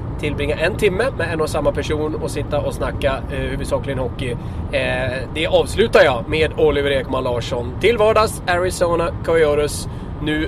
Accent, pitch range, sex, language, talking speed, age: Swedish, 140-170 Hz, male, English, 160 wpm, 20-39